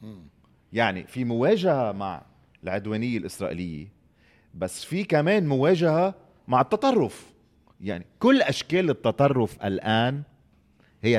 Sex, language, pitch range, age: male, Arabic, 95-135 Hz, 30-49